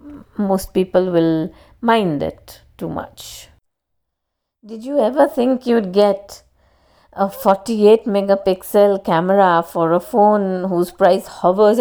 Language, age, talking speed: English, 50-69, 115 wpm